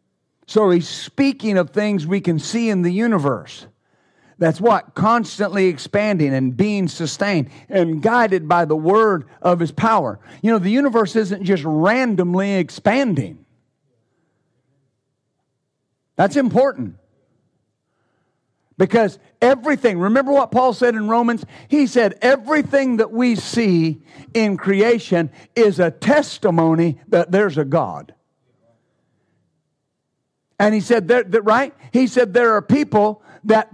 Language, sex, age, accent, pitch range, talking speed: English, male, 50-69, American, 175-260 Hz, 125 wpm